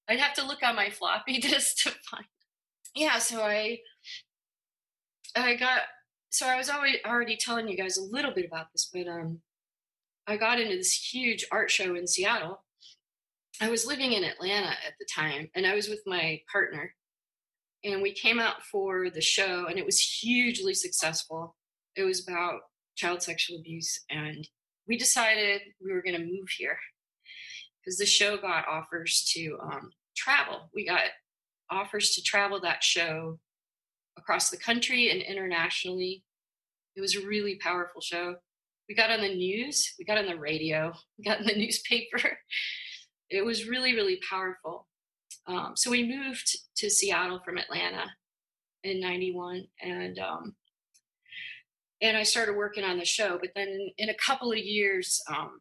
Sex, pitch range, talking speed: female, 175-235 Hz, 165 wpm